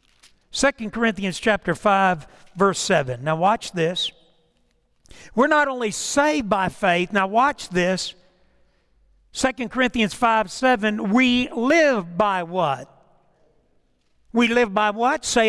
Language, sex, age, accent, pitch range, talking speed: English, male, 60-79, American, 195-270 Hz, 120 wpm